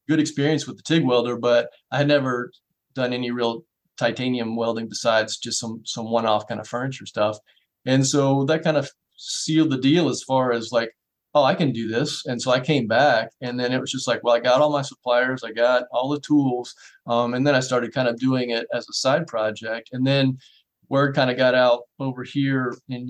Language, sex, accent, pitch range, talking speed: English, male, American, 115-135 Hz, 225 wpm